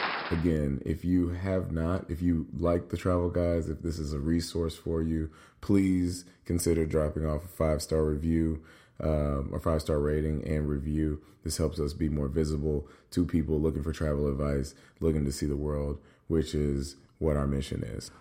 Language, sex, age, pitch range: English, male, 30-49, 75-90 Hz